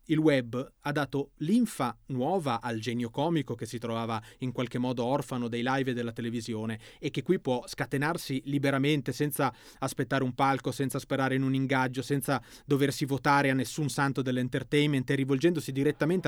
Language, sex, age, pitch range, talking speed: Italian, male, 30-49, 125-150 Hz, 170 wpm